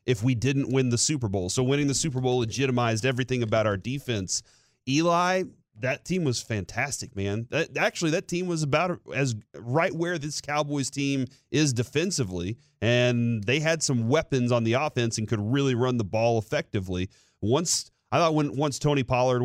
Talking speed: 180 wpm